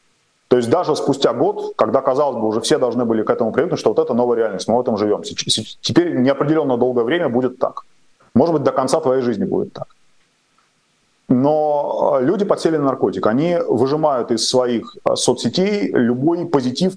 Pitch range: 120-155 Hz